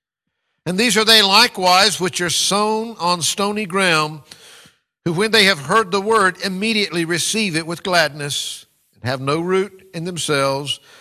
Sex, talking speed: male, 160 wpm